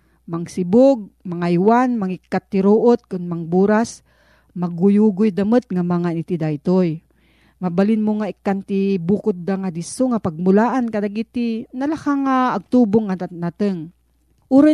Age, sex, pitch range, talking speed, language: 40-59, female, 180-225 Hz, 130 wpm, Filipino